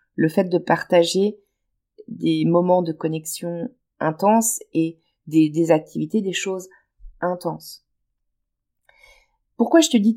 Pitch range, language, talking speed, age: 170-230 Hz, French, 120 wpm, 30-49